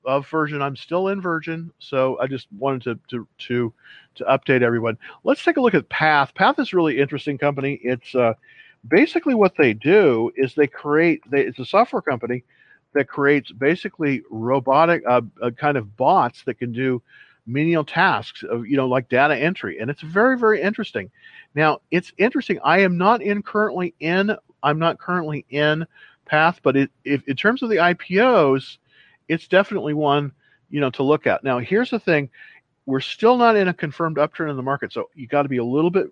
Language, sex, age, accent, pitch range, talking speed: English, male, 50-69, American, 135-185 Hz, 200 wpm